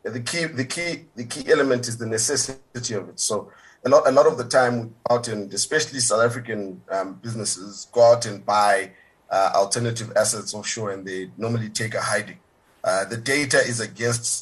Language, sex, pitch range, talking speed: English, male, 110-130 Hz, 190 wpm